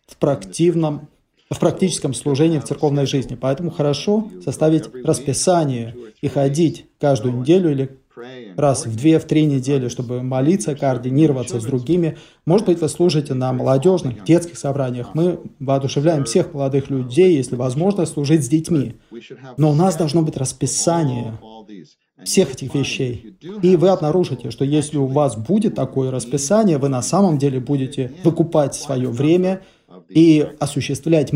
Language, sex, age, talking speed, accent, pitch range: Russian, male, 30-49, 140 wpm, native, 130-160 Hz